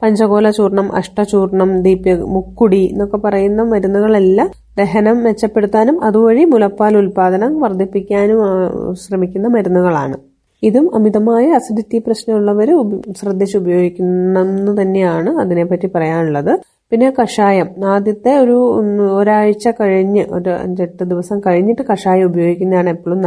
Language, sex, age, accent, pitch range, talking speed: Malayalam, female, 30-49, native, 180-215 Hz, 100 wpm